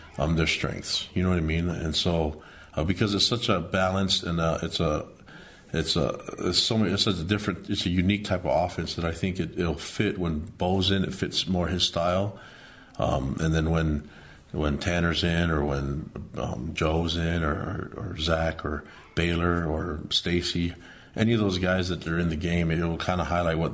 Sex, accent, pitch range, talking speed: male, American, 80-95 Hz, 205 wpm